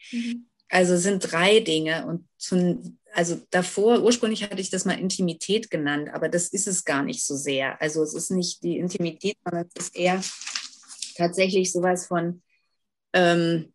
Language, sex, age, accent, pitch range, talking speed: German, female, 30-49, German, 165-200 Hz, 160 wpm